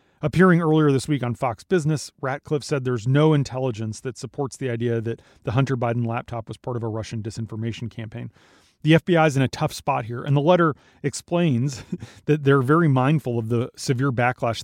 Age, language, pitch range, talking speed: 30-49, English, 120-145 Hz, 195 wpm